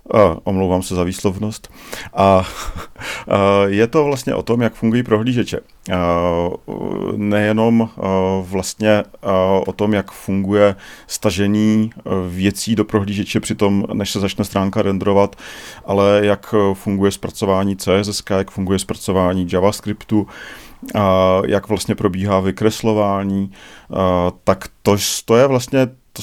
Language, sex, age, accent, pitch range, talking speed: Czech, male, 40-59, native, 100-110 Hz, 110 wpm